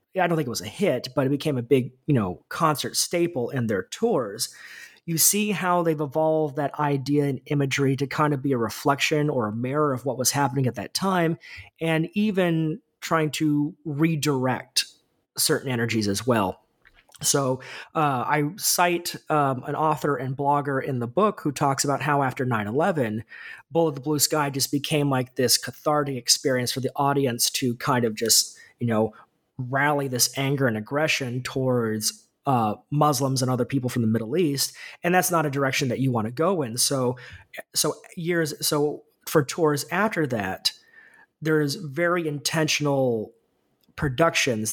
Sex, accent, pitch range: male, American, 125-155 Hz